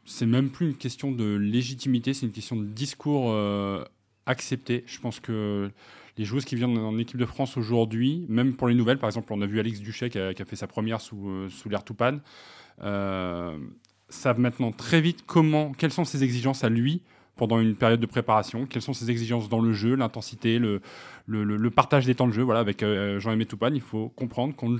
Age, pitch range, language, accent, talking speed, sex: 20-39, 105-125 Hz, French, French, 215 wpm, male